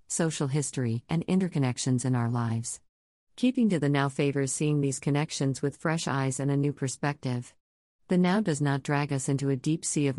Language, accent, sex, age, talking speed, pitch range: English, American, female, 50-69, 195 wpm, 130-155 Hz